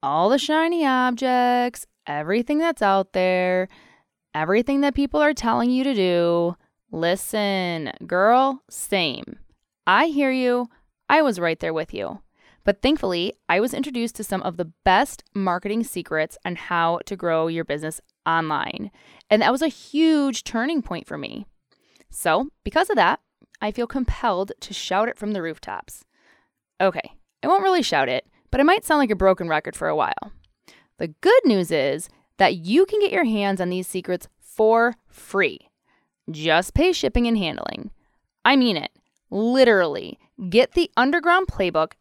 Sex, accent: female, American